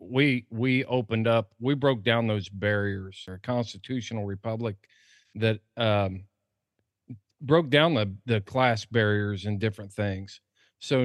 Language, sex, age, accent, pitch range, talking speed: English, male, 40-59, American, 105-130 Hz, 130 wpm